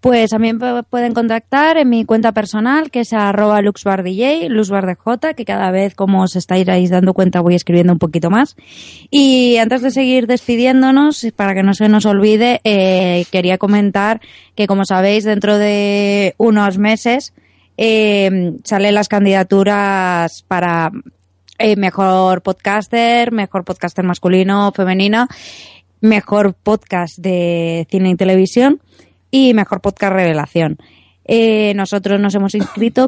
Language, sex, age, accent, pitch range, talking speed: Spanish, female, 20-39, Spanish, 185-220 Hz, 130 wpm